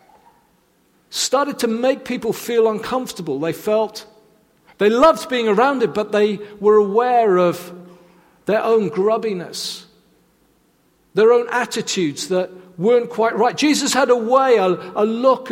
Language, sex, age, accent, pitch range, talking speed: English, male, 50-69, British, 215-270 Hz, 135 wpm